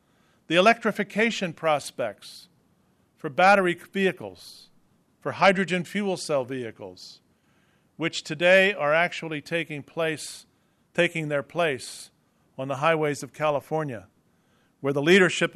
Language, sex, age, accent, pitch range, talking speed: English, male, 50-69, American, 145-185 Hz, 110 wpm